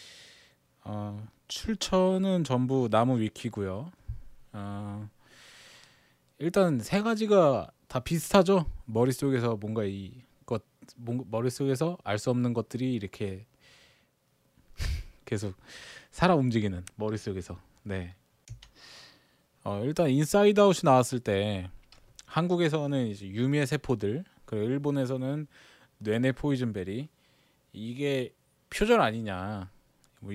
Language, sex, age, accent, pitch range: Korean, male, 20-39, native, 105-145 Hz